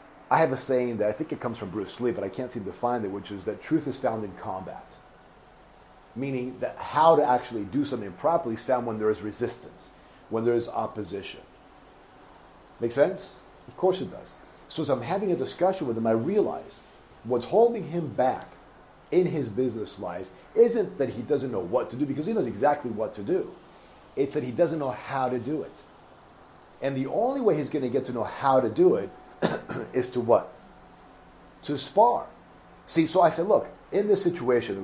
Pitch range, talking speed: 115-180 Hz, 210 wpm